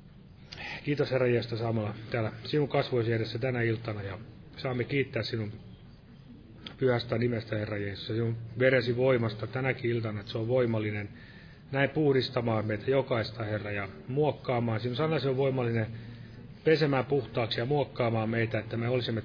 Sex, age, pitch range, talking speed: male, 30-49, 115-135 Hz, 145 wpm